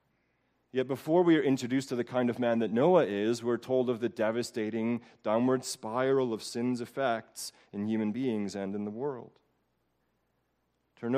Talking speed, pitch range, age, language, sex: 165 wpm, 115-165 Hz, 30-49, English, male